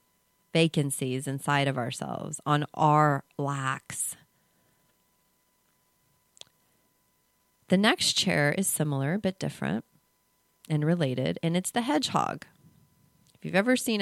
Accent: American